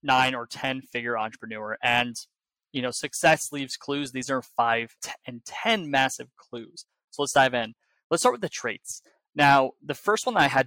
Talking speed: 185 wpm